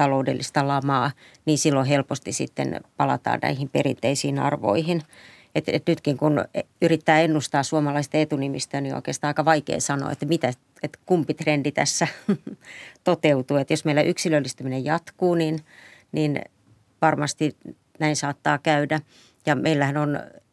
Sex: female